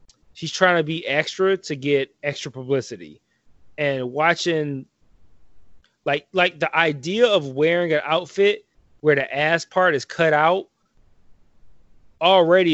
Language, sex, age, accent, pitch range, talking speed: English, male, 20-39, American, 140-175 Hz, 125 wpm